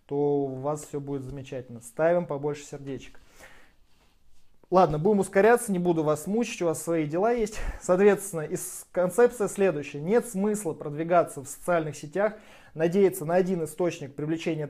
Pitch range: 150-185 Hz